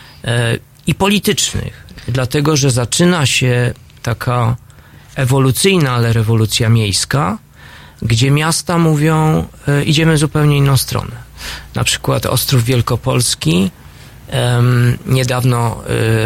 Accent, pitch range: native, 115-145 Hz